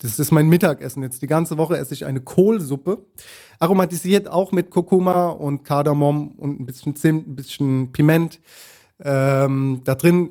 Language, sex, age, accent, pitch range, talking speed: German, male, 30-49, German, 140-175 Hz, 165 wpm